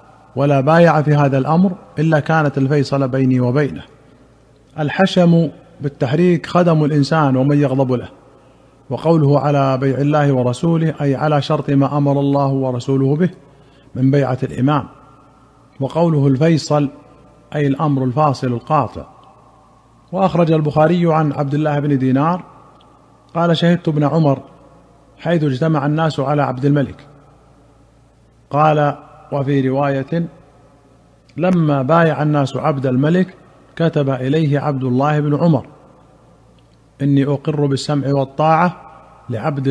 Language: Arabic